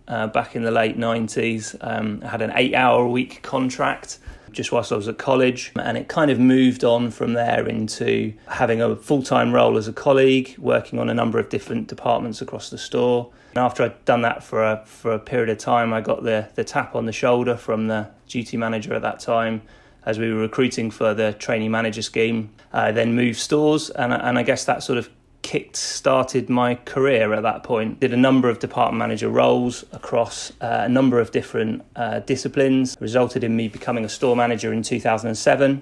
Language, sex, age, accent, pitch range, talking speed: English, male, 30-49, British, 110-125 Hz, 205 wpm